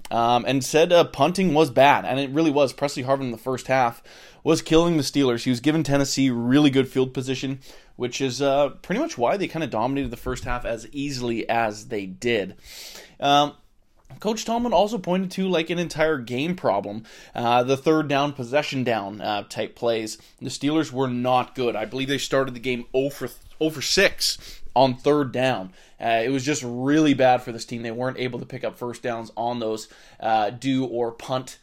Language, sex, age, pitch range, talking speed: English, male, 20-39, 120-155 Hz, 205 wpm